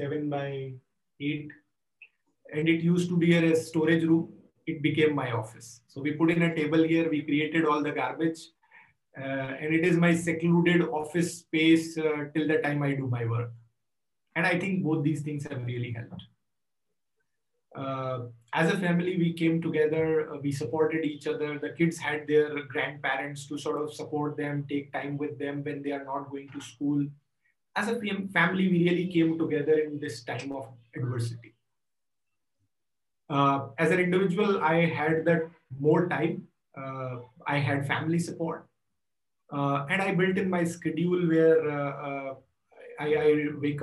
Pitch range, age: 140-165 Hz, 30-49